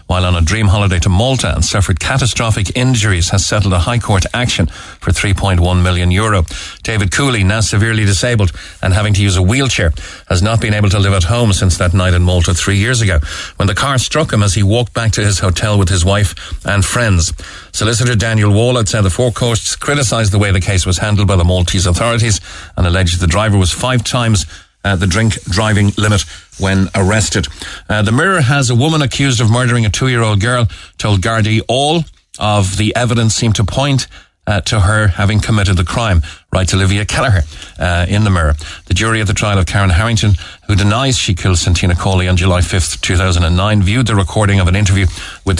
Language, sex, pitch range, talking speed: English, male, 90-110 Hz, 205 wpm